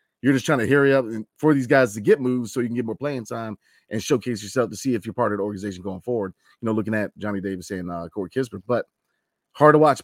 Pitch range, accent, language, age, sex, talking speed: 110-135 Hz, American, English, 30-49, male, 275 wpm